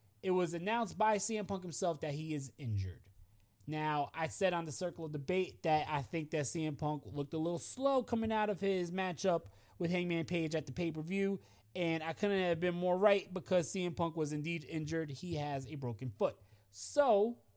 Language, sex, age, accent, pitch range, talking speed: English, male, 20-39, American, 130-175 Hz, 200 wpm